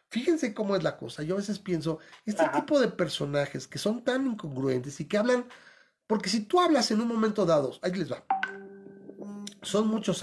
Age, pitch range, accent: 40-59, 165-235 Hz, Mexican